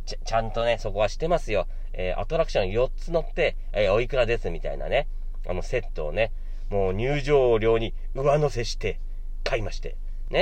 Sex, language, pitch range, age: male, Japanese, 100-165 Hz, 40-59